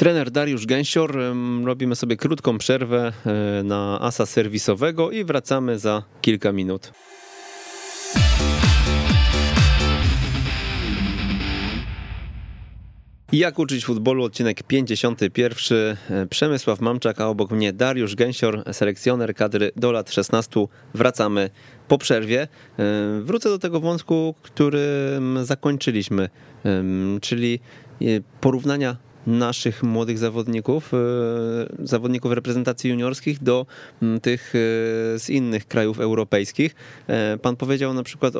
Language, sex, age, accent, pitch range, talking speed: Polish, male, 30-49, native, 105-125 Hz, 90 wpm